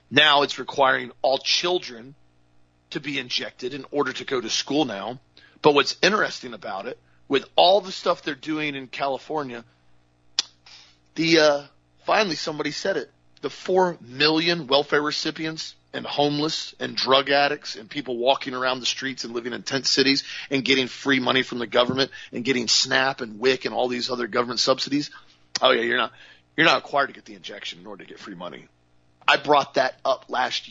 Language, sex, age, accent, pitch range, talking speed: English, male, 40-59, American, 115-150 Hz, 185 wpm